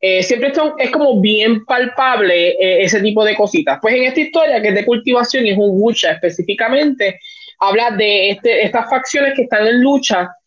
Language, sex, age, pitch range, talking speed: Spanish, male, 20-39, 195-255 Hz, 195 wpm